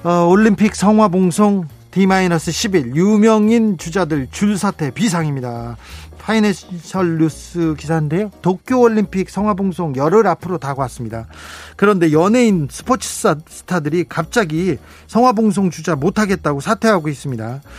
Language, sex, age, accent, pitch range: Korean, male, 40-59, native, 150-215 Hz